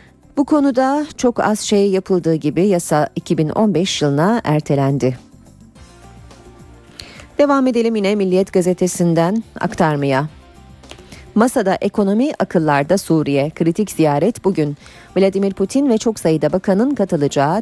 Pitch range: 155-215 Hz